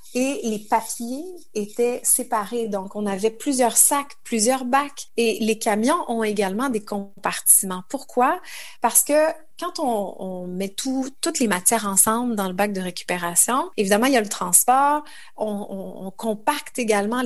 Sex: female